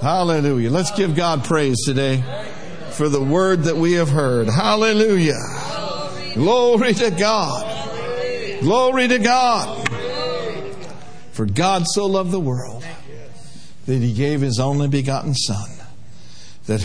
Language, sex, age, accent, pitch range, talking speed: English, male, 60-79, American, 115-165 Hz, 120 wpm